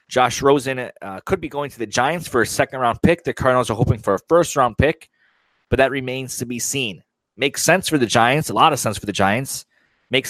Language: English